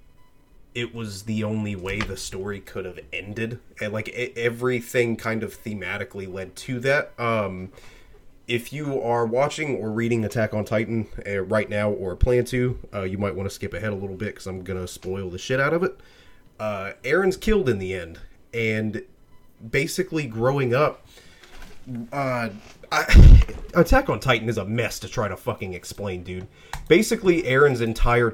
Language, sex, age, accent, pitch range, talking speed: English, male, 30-49, American, 105-130 Hz, 170 wpm